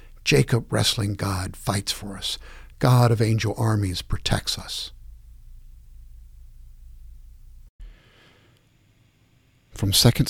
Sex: male